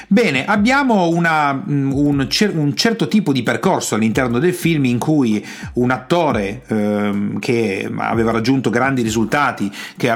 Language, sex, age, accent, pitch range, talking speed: Italian, male, 40-59, native, 115-170 Hz, 135 wpm